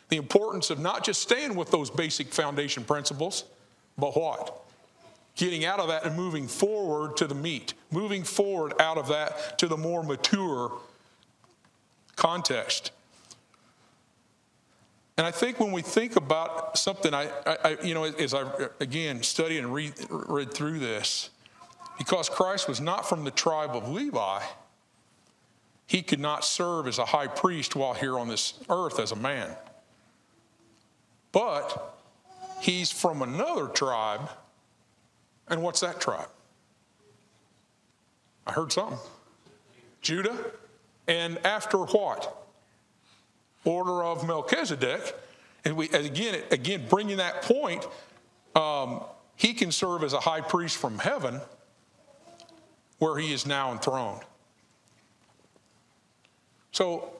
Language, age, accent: English, 50-69, American